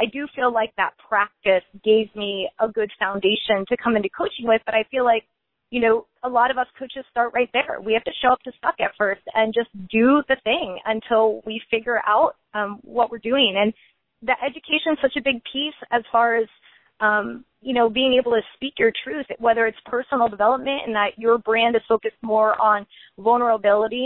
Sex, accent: female, American